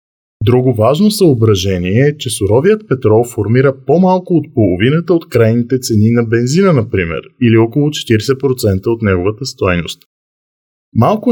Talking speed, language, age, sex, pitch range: 125 wpm, Bulgarian, 20-39, male, 105-140 Hz